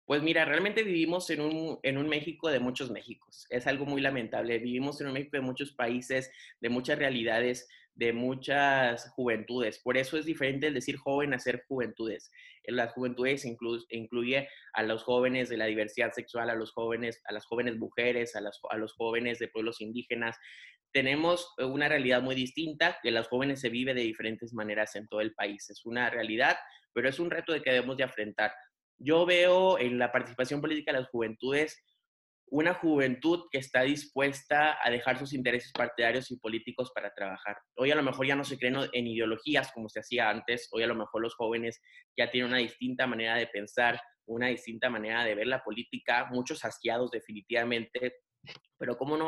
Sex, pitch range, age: male, 115-140 Hz, 20-39